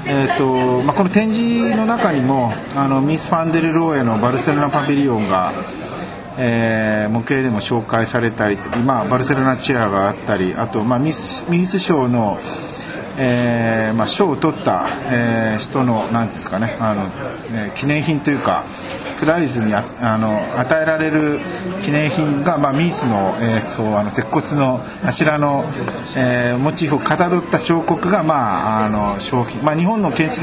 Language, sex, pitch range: Japanese, male, 115-160 Hz